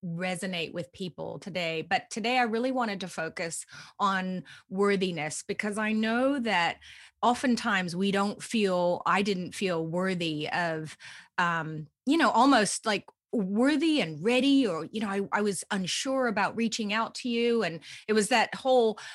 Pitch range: 165-215 Hz